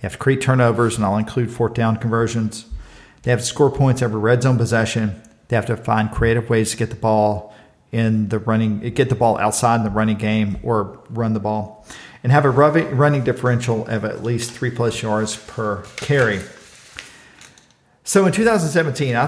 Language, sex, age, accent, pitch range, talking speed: English, male, 50-69, American, 110-130 Hz, 190 wpm